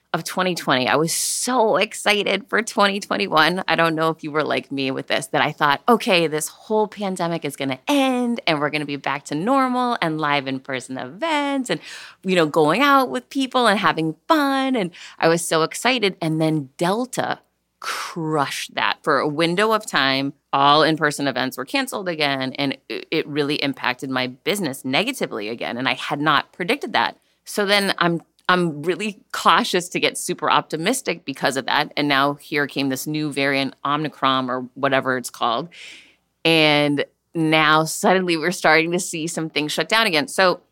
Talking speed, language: 185 wpm, English